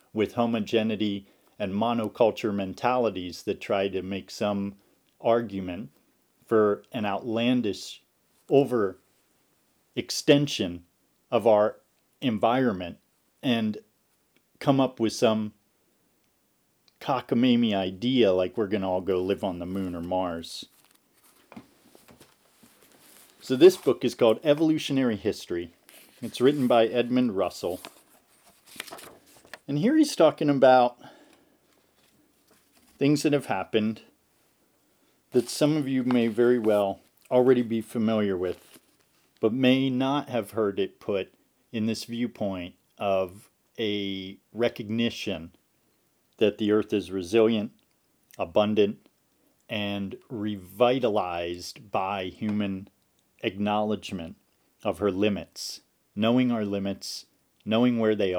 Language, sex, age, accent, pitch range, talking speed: English, male, 40-59, American, 100-125 Hz, 105 wpm